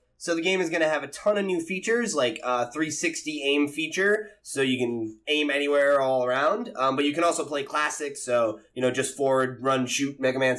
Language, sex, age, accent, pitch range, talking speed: English, male, 20-39, American, 125-165 Hz, 230 wpm